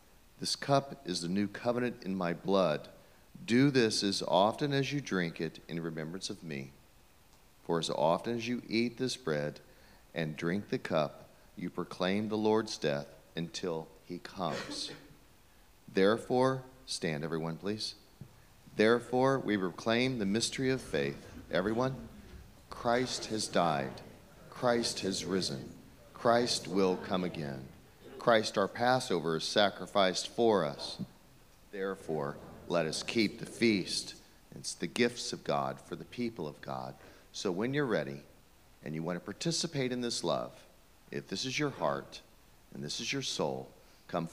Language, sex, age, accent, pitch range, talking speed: English, male, 40-59, American, 80-120 Hz, 150 wpm